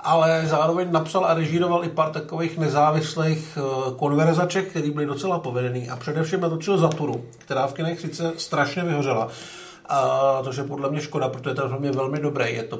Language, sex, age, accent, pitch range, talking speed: Czech, male, 50-69, native, 135-175 Hz, 175 wpm